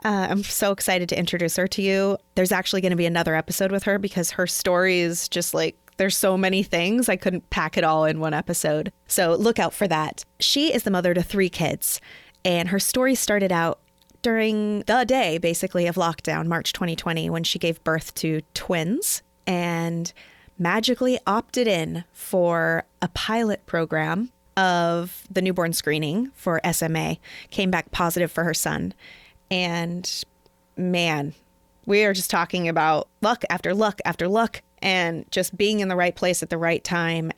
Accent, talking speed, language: American, 175 wpm, English